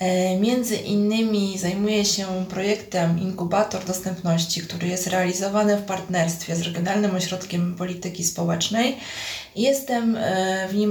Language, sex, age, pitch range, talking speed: Polish, female, 20-39, 185-215 Hz, 110 wpm